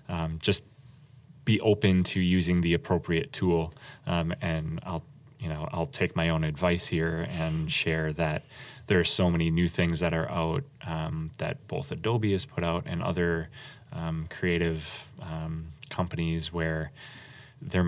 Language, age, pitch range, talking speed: English, 20-39, 80-95 Hz, 160 wpm